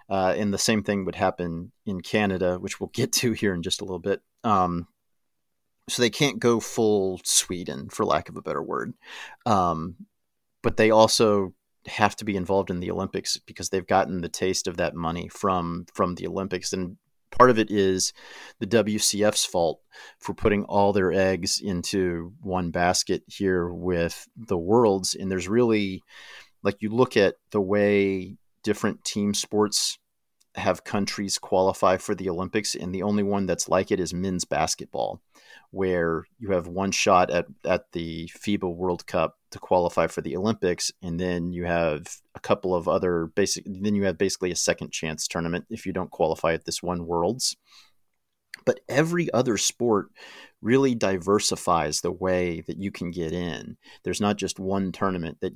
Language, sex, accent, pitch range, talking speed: English, male, American, 90-105 Hz, 175 wpm